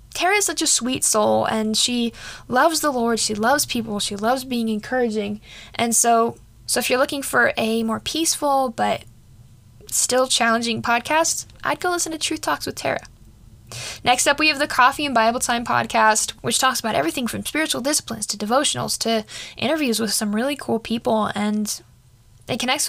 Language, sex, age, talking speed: English, female, 10-29, 180 wpm